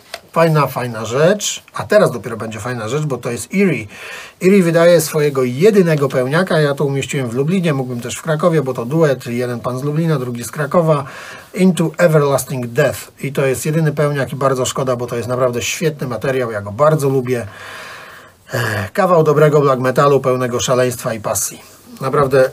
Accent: native